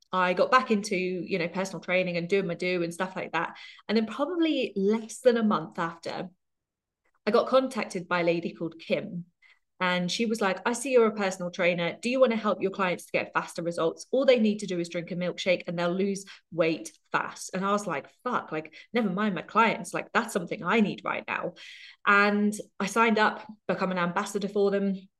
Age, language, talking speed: 20-39, English, 220 wpm